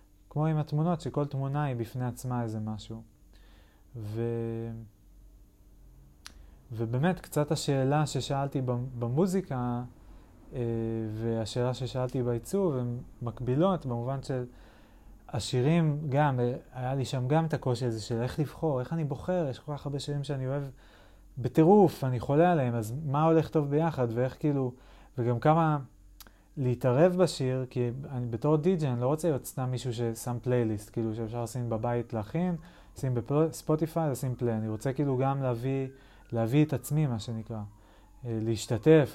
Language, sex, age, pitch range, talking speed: Hebrew, male, 30-49, 115-145 Hz, 145 wpm